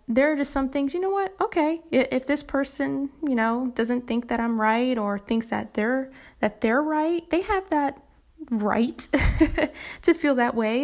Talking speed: 190 wpm